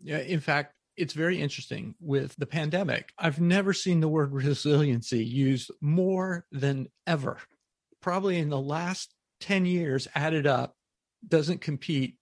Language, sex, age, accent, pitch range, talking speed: English, male, 40-59, American, 125-155 Hz, 140 wpm